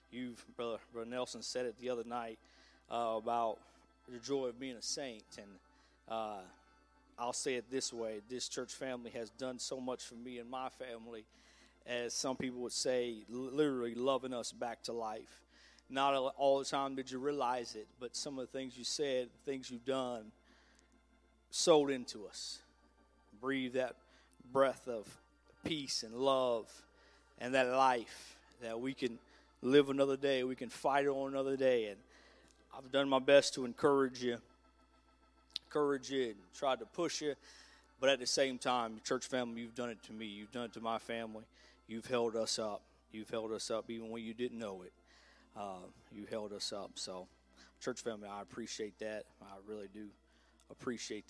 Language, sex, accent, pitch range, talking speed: English, male, American, 115-130 Hz, 175 wpm